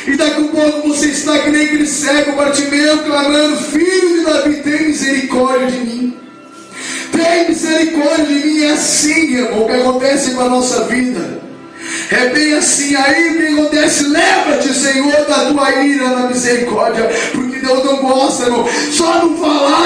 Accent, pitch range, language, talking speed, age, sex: Brazilian, 275-310 Hz, Portuguese, 160 wpm, 20-39, male